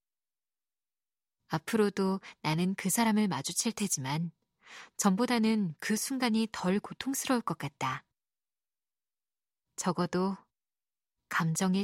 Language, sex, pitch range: Korean, female, 175-230 Hz